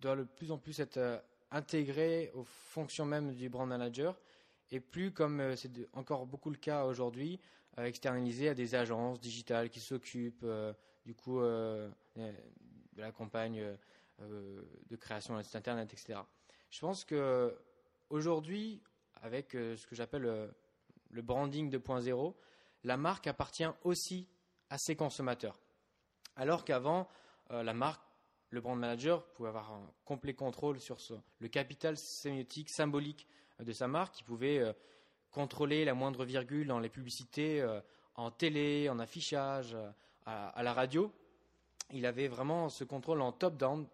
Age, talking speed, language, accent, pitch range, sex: 20-39, 145 wpm, French, French, 120-155 Hz, male